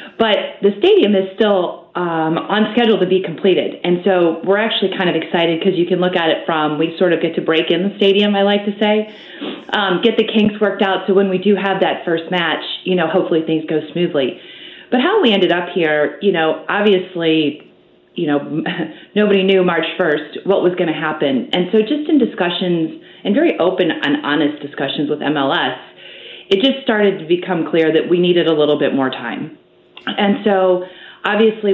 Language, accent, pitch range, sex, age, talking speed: English, American, 165-205 Hz, female, 30-49, 205 wpm